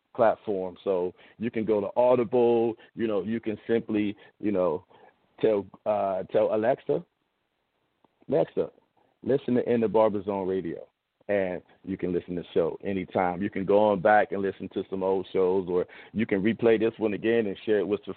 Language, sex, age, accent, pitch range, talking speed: English, male, 40-59, American, 100-120 Hz, 180 wpm